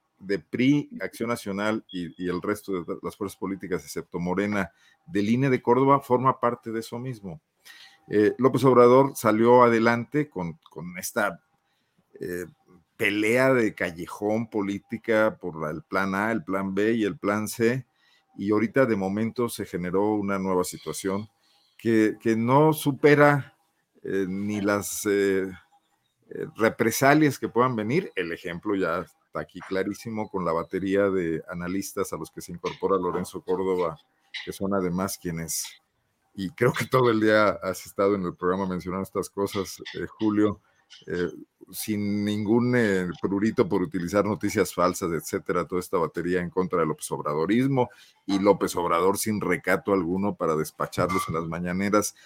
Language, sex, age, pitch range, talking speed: Spanish, male, 50-69, 95-115 Hz, 155 wpm